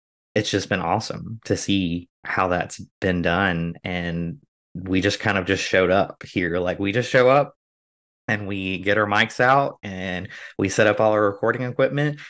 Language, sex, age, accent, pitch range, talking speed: English, male, 20-39, American, 90-105 Hz, 185 wpm